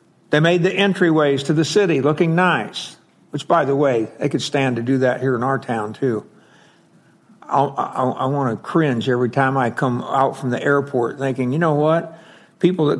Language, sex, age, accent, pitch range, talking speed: English, male, 60-79, American, 145-195 Hz, 195 wpm